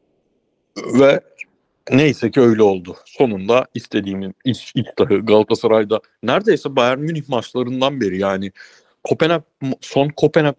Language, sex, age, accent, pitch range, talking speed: Turkish, male, 60-79, native, 115-155 Hz, 110 wpm